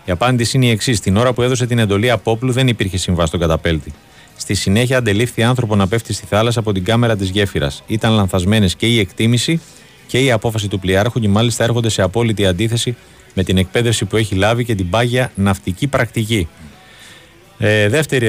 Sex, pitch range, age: male, 105-130 Hz, 30-49